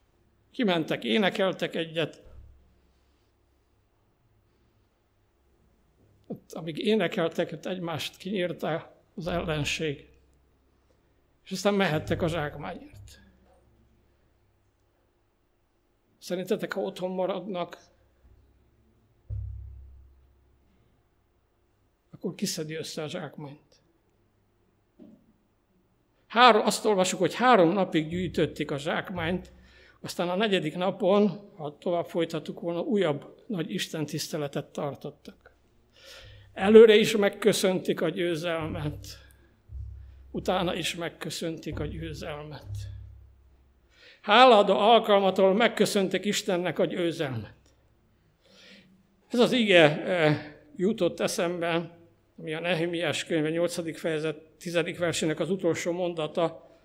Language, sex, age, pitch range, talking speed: Hungarian, male, 60-79, 110-185 Hz, 80 wpm